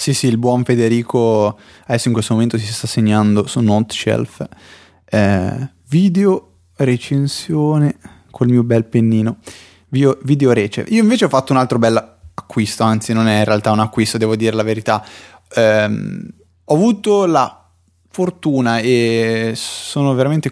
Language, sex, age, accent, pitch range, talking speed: Italian, male, 20-39, native, 110-135 Hz, 150 wpm